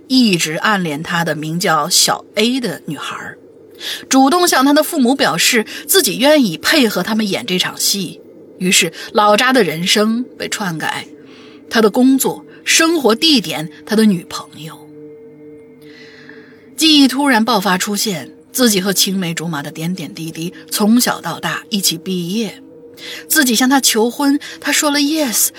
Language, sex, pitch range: Chinese, female, 165-265 Hz